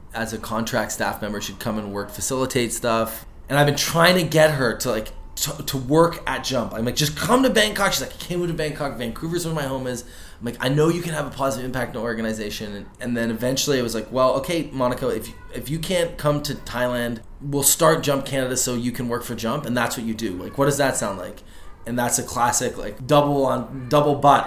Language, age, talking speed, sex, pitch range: English, 20-39, 255 wpm, male, 115-145 Hz